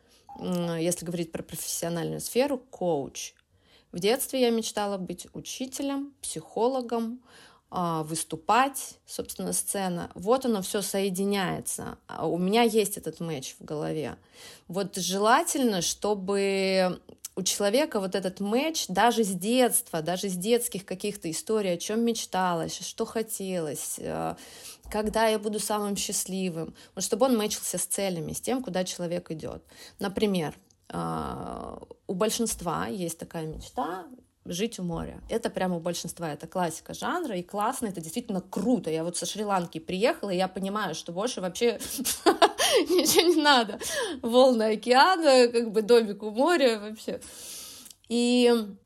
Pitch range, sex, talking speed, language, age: 180-235 Hz, female, 135 wpm, Russian, 20-39